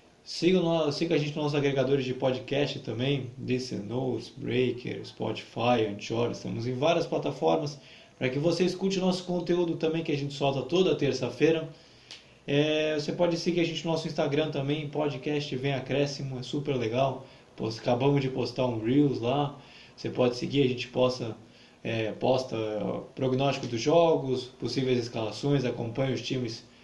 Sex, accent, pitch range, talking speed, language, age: male, Brazilian, 125-160 Hz, 160 wpm, Portuguese, 20-39